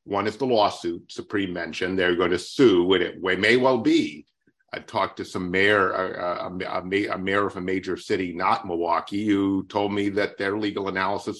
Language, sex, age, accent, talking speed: English, male, 50-69, American, 195 wpm